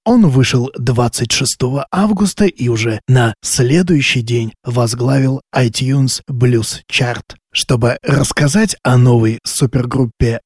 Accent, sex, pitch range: native, male, 120-155 Hz